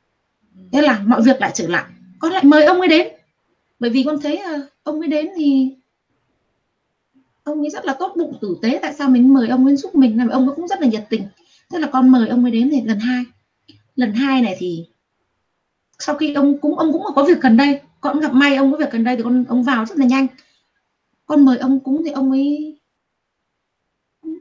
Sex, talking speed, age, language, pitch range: female, 225 wpm, 20-39, Vietnamese, 250-315 Hz